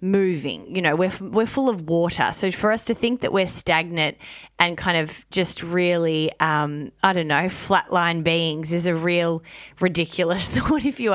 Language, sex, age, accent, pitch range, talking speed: English, female, 20-39, Australian, 160-200 Hz, 185 wpm